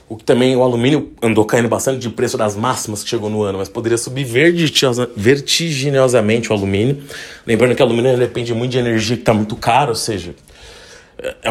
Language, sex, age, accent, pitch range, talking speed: Portuguese, male, 30-49, Brazilian, 110-135 Hz, 195 wpm